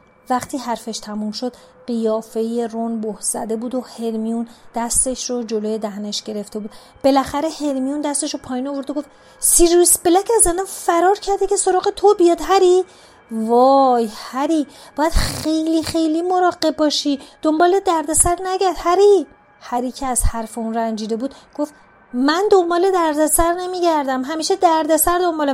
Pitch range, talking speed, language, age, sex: 225-305 Hz, 145 wpm, Persian, 30-49, female